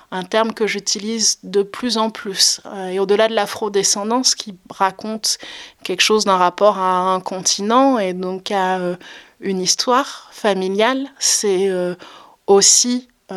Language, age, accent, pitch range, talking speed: French, 20-39, French, 185-215 Hz, 130 wpm